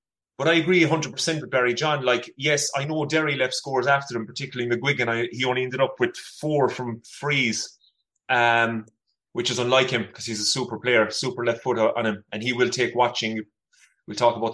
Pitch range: 115-135 Hz